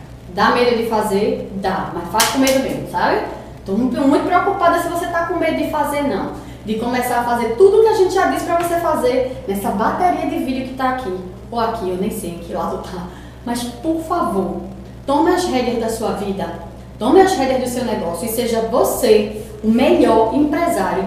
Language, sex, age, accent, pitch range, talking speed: Portuguese, female, 20-39, Brazilian, 200-280 Hz, 210 wpm